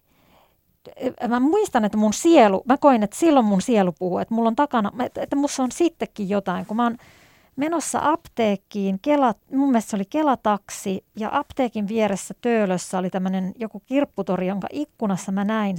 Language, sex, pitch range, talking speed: Finnish, female, 190-240 Hz, 165 wpm